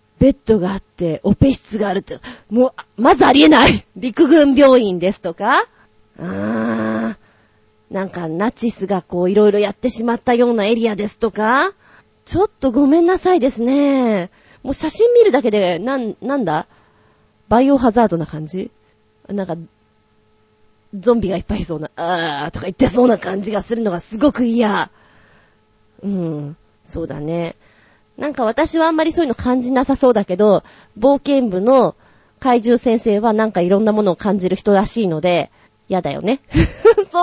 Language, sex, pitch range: Japanese, female, 185-275 Hz